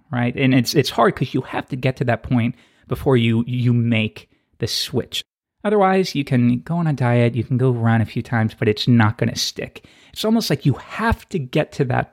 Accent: American